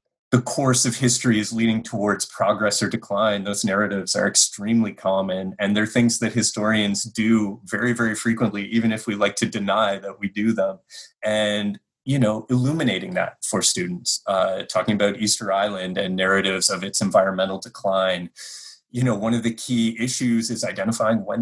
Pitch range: 95-115 Hz